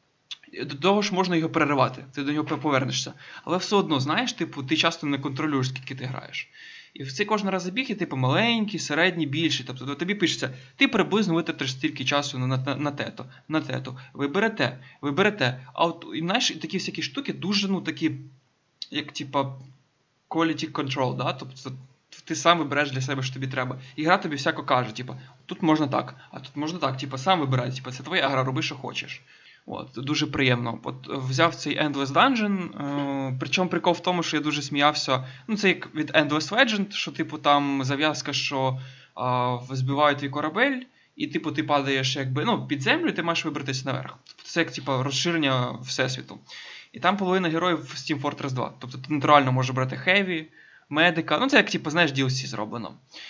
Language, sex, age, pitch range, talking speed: Ukrainian, male, 20-39, 135-170 Hz, 195 wpm